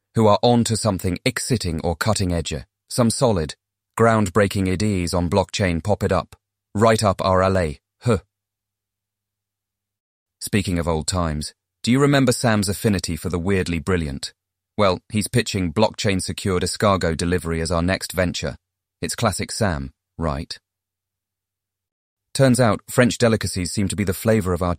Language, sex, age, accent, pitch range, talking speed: English, male, 30-49, British, 90-105 Hz, 145 wpm